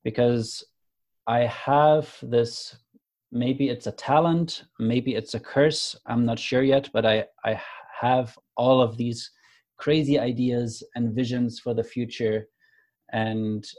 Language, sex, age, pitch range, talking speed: English, male, 30-49, 115-130 Hz, 135 wpm